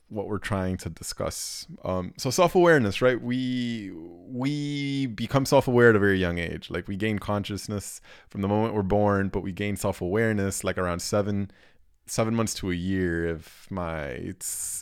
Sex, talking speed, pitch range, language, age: male, 170 wpm, 95-115 Hz, English, 20-39